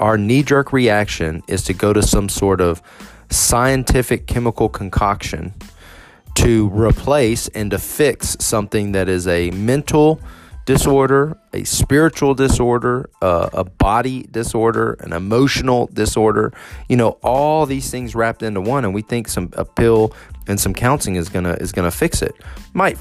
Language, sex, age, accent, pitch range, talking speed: English, male, 30-49, American, 90-115 Hz, 150 wpm